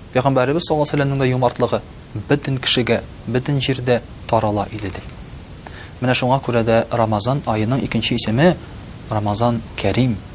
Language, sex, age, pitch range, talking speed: Russian, male, 30-49, 110-135 Hz, 105 wpm